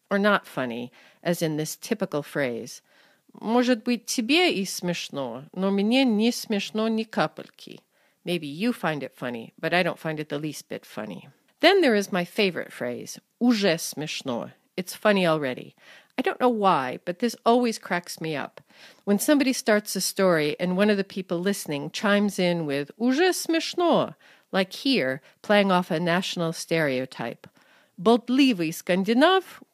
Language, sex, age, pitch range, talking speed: English, female, 50-69, 170-235 Hz, 150 wpm